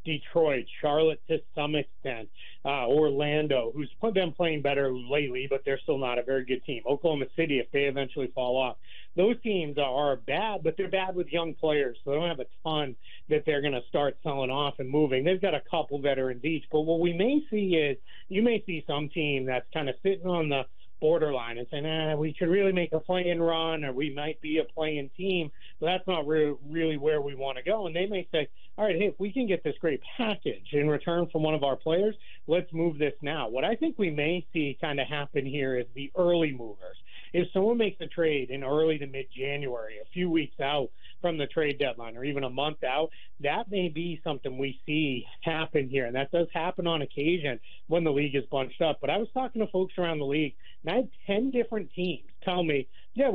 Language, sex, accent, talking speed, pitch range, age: English, male, American, 230 wpm, 140-170 Hz, 30-49